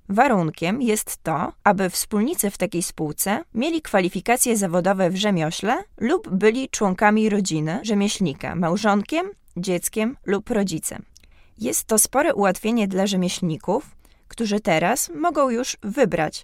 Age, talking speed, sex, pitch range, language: 20-39, 120 wpm, female, 180-225 Hz, Polish